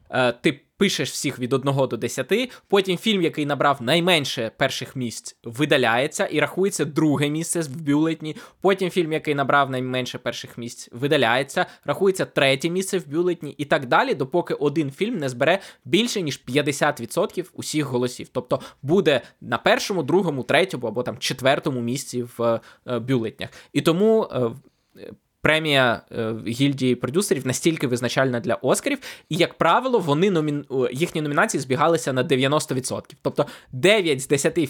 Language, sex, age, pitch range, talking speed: Ukrainian, male, 20-39, 125-170 Hz, 150 wpm